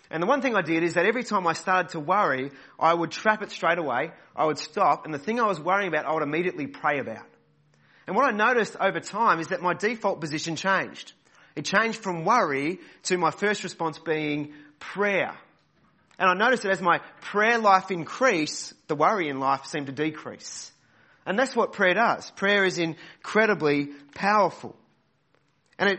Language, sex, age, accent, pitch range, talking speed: English, male, 30-49, Australian, 145-190 Hz, 190 wpm